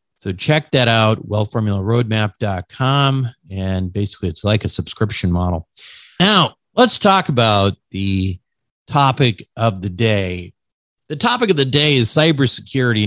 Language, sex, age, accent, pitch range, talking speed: English, male, 50-69, American, 100-135 Hz, 130 wpm